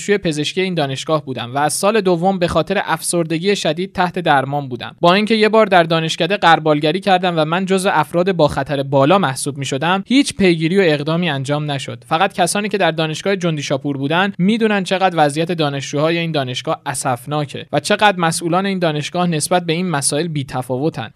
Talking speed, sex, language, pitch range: 190 wpm, male, Persian, 150-190 Hz